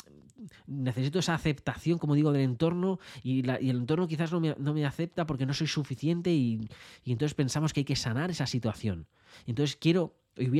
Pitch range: 115-145 Hz